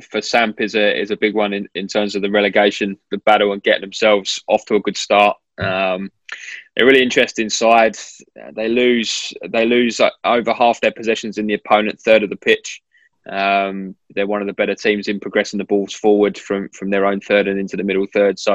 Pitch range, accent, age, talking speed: 100-110 Hz, British, 20-39, 220 wpm